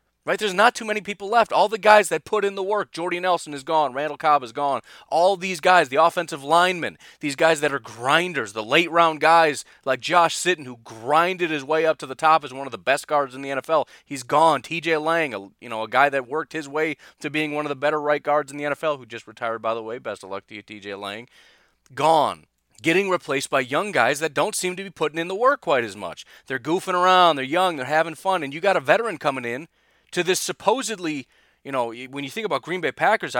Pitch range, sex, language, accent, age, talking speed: 140-195 Hz, male, English, American, 30-49, 250 wpm